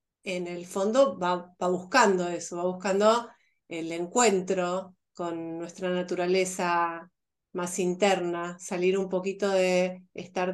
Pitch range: 180-215 Hz